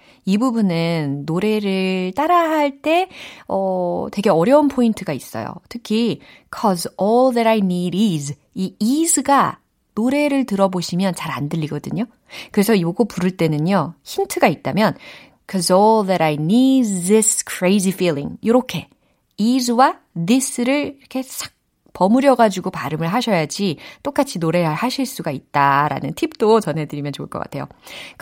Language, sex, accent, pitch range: Korean, female, native, 155-235 Hz